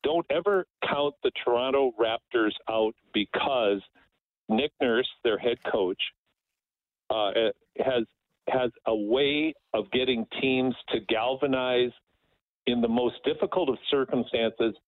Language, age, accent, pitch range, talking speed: English, 50-69, American, 115-145 Hz, 115 wpm